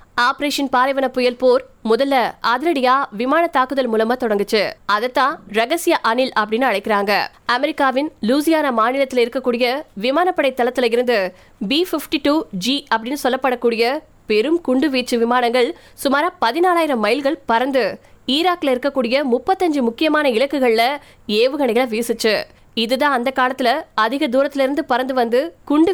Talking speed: 55 wpm